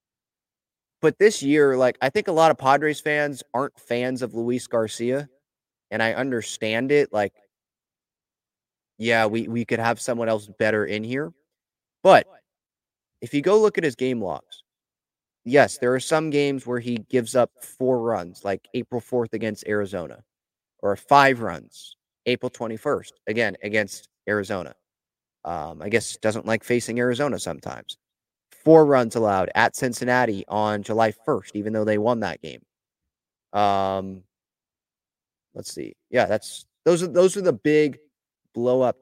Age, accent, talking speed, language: 30-49, American, 150 wpm, English